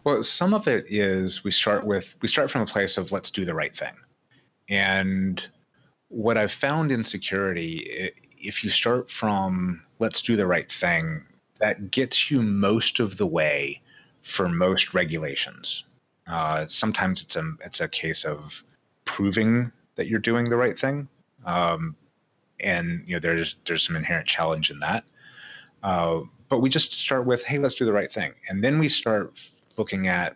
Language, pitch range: English, 85-115 Hz